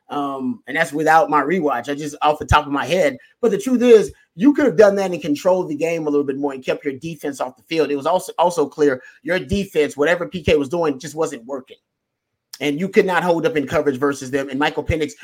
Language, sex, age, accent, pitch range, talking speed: English, male, 30-49, American, 150-195 Hz, 255 wpm